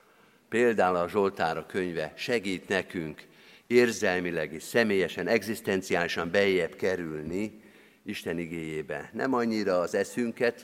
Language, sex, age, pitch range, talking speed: Hungarian, male, 50-69, 95-125 Hz, 100 wpm